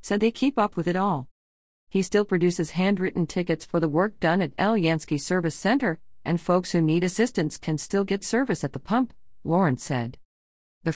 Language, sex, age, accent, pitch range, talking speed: English, female, 50-69, American, 140-185 Hz, 205 wpm